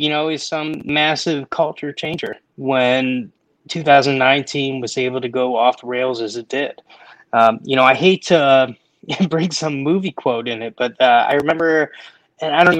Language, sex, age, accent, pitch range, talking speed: English, male, 20-39, American, 125-150 Hz, 190 wpm